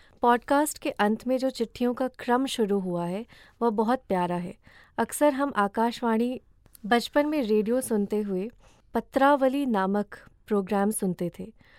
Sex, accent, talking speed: female, native, 145 wpm